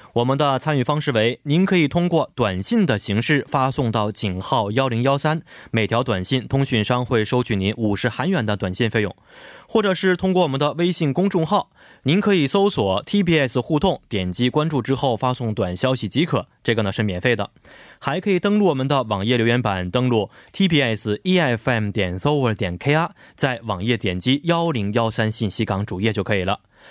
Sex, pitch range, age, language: male, 110-155 Hz, 20-39, Korean